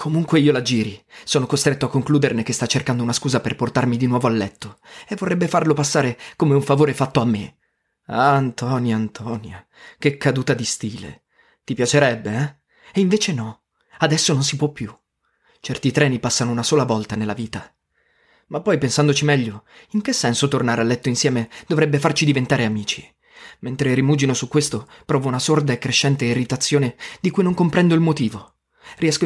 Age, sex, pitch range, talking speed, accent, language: 20-39, male, 120-155 Hz, 180 wpm, native, Italian